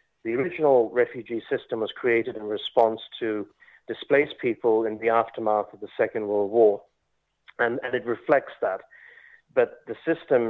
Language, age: English, 30-49